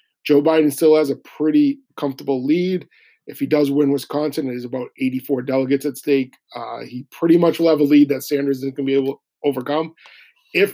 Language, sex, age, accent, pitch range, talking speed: English, male, 40-59, American, 135-165 Hz, 205 wpm